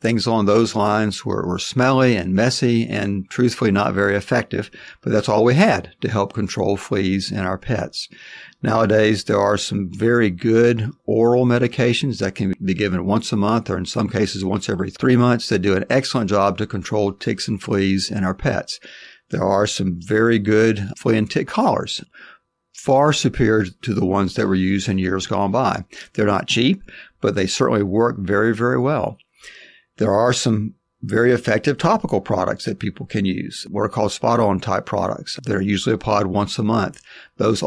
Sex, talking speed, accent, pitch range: male, 190 wpm, American, 100-120 Hz